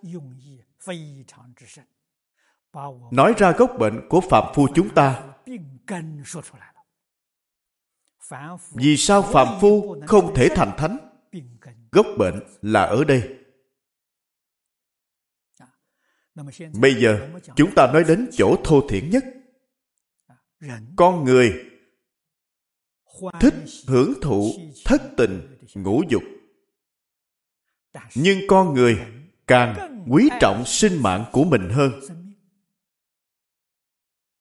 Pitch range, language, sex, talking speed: 130-200 Hz, Vietnamese, male, 90 wpm